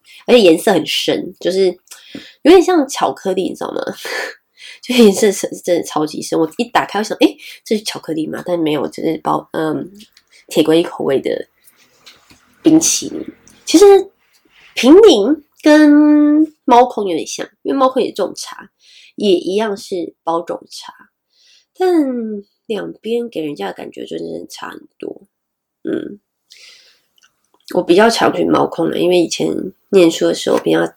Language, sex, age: Chinese, female, 20-39